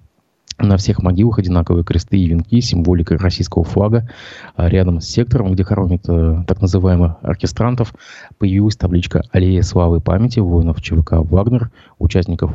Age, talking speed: 20-39, 140 wpm